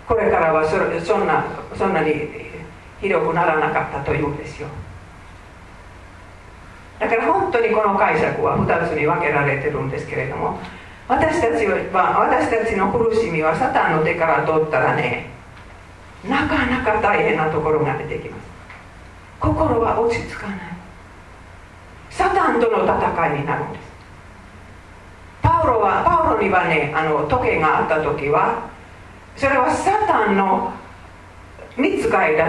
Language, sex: Japanese, female